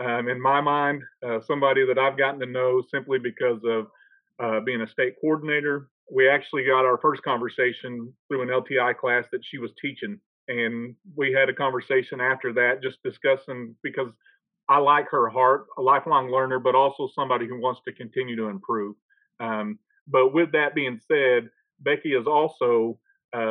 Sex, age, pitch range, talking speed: male, 40-59, 125-150 Hz, 175 wpm